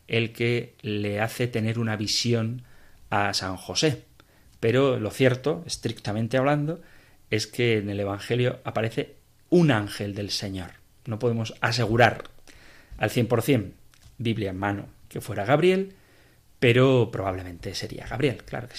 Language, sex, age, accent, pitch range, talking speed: Spanish, male, 30-49, Spanish, 105-135 Hz, 135 wpm